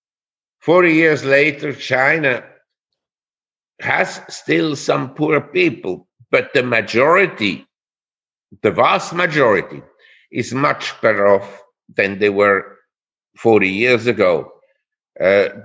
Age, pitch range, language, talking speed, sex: 50-69, 120-160 Hz, English, 100 wpm, male